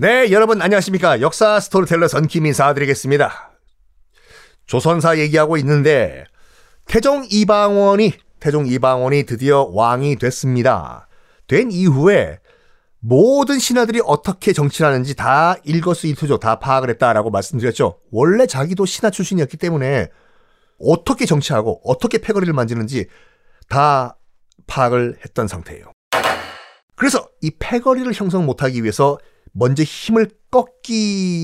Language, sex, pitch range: Korean, male, 130-200 Hz